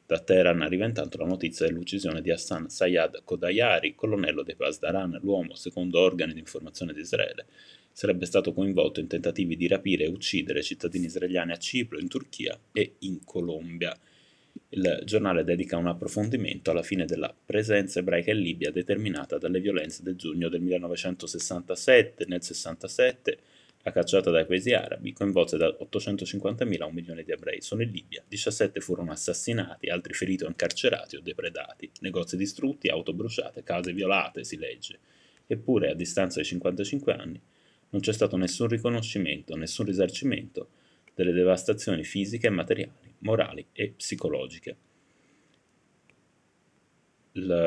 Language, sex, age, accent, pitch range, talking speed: Italian, male, 30-49, native, 85-140 Hz, 145 wpm